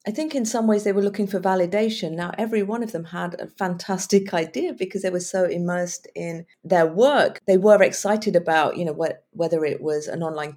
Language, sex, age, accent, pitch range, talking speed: English, female, 40-59, British, 165-210 Hz, 220 wpm